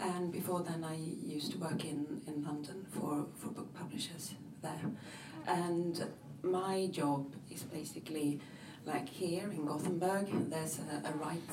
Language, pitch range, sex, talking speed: Swedish, 155-175 Hz, female, 145 wpm